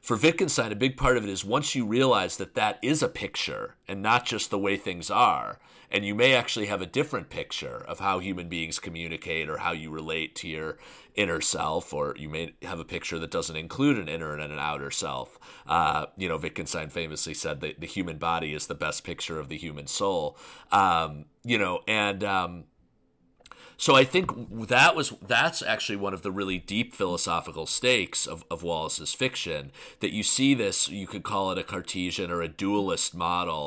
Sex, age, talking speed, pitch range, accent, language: male, 40-59, 205 wpm, 80-105 Hz, American, English